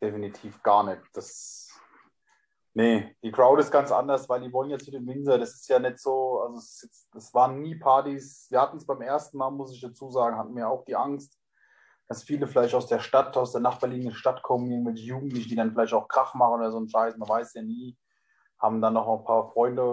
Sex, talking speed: male, 225 wpm